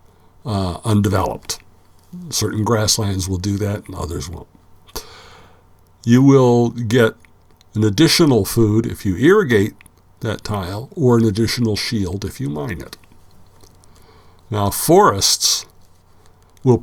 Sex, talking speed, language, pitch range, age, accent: male, 115 wpm, English, 90-115 Hz, 60-79, American